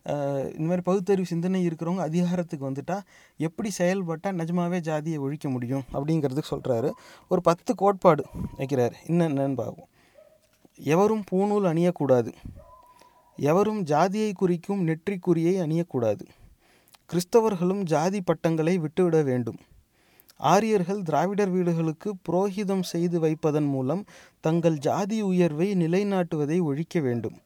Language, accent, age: English, Indian, 30-49